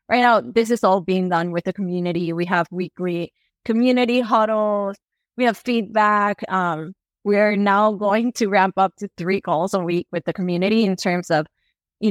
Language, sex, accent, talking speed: English, female, American, 190 wpm